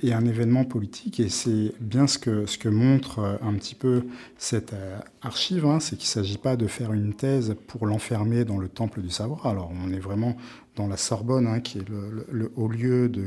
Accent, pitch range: French, 105-125 Hz